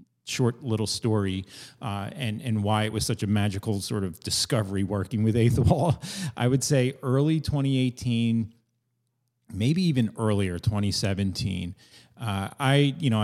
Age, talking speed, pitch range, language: 30-49, 140 wpm, 100-125 Hz, English